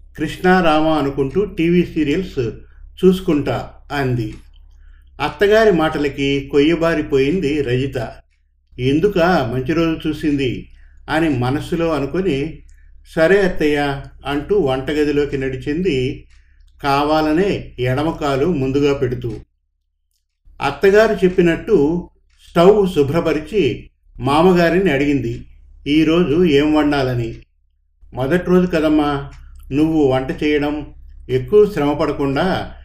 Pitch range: 110-160 Hz